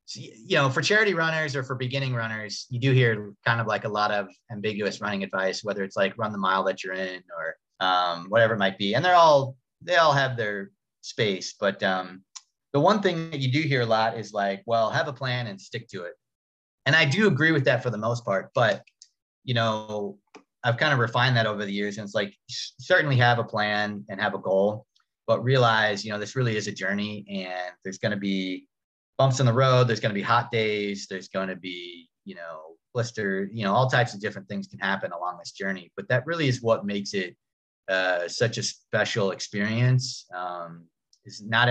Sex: male